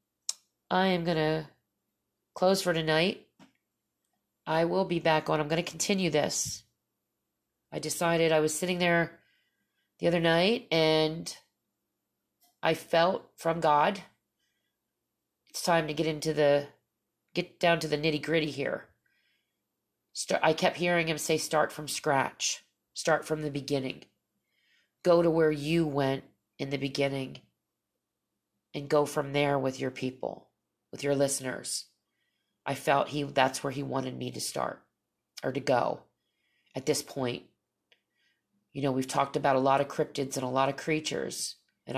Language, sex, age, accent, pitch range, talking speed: English, female, 30-49, American, 140-165 Hz, 150 wpm